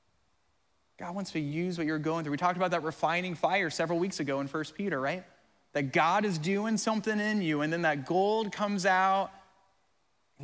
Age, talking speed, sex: 30-49, 200 wpm, male